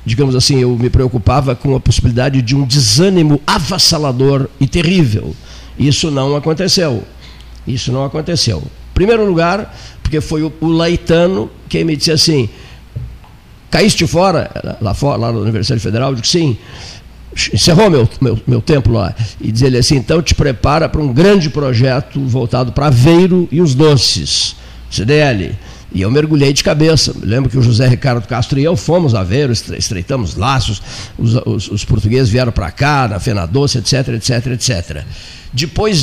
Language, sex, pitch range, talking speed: Portuguese, male, 115-150 Hz, 165 wpm